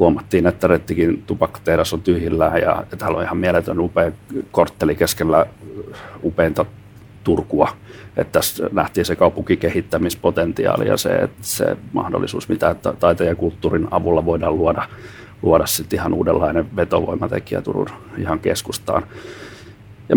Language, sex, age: Finnish, male, 40-59